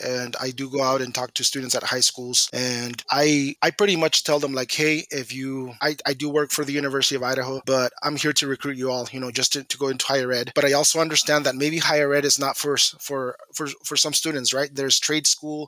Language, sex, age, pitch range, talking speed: English, male, 20-39, 130-150 Hz, 260 wpm